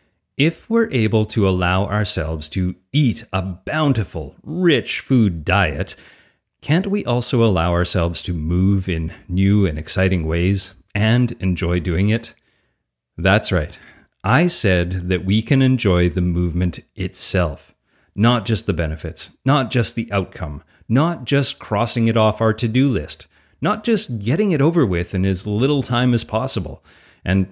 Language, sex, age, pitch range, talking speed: English, male, 30-49, 90-115 Hz, 150 wpm